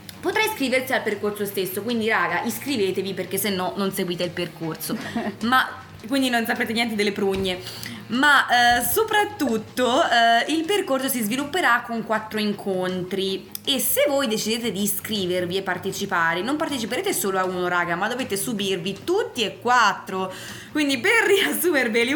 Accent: native